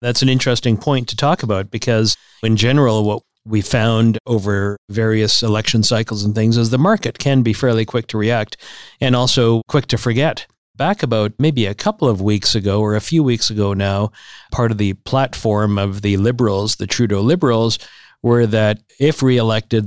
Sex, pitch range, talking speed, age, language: male, 105-125 Hz, 185 wpm, 50-69, English